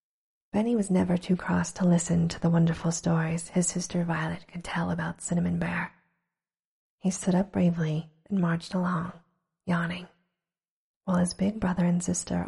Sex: female